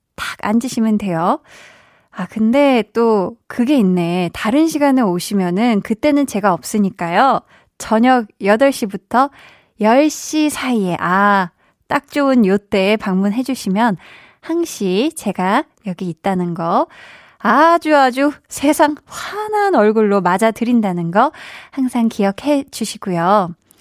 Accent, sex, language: native, female, Korean